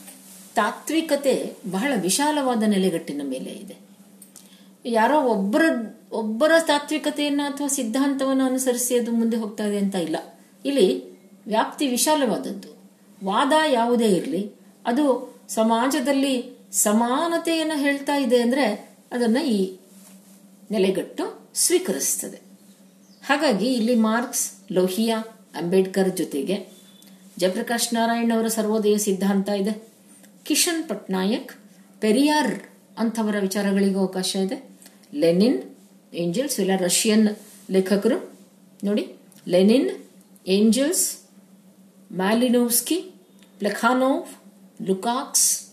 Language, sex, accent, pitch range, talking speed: Kannada, female, native, 195-255 Hz, 80 wpm